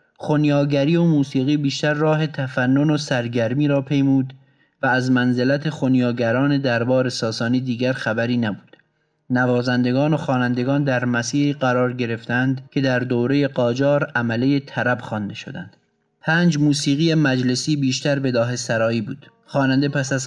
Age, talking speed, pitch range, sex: 30-49, 135 wpm, 120-140 Hz, male